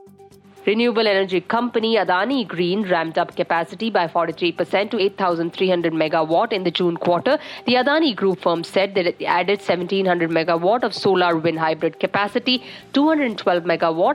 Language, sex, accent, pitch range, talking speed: English, female, Indian, 175-215 Hz, 135 wpm